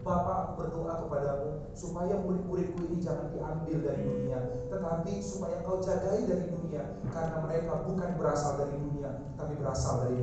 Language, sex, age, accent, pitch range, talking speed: Indonesian, male, 30-49, native, 130-200 Hz, 145 wpm